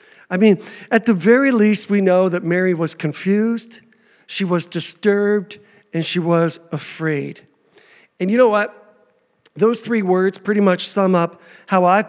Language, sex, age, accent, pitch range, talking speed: English, male, 50-69, American, 175-215 Hz, 160 wpm